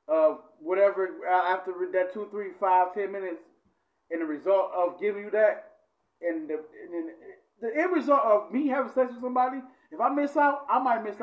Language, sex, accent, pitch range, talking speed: English, male, American, 200-280 Hz, 190 wpm